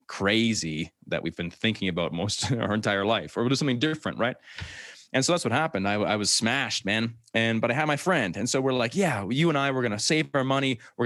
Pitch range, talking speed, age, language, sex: 95-120 Hz, 255 wpm, 20-39, English, male